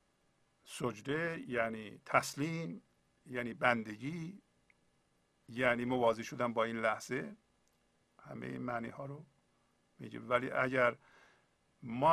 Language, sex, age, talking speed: Persian, male, 50-69, 100 wpm